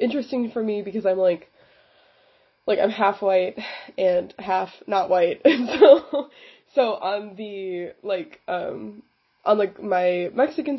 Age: 20-39